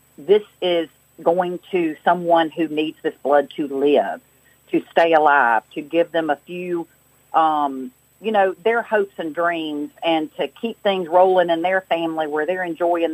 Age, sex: 40-59, female